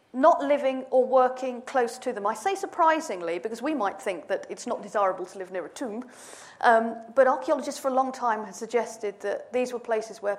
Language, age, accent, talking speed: English, 40-59, British, 215 wpm